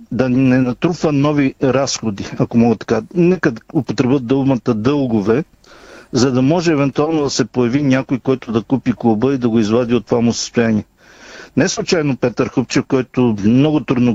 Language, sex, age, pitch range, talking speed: Bulgarian, male, 50-69, 120-145 Hz, 170 wpm